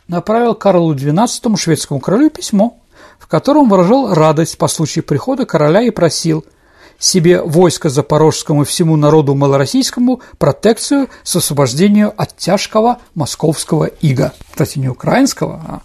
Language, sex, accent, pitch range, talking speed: Russian, male, native, 160-235 Hz, 135 wpm